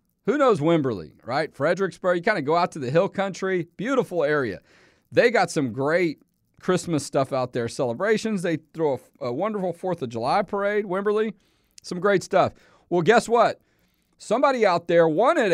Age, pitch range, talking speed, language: 40-59, 145-190 Hz, 170 wpm, English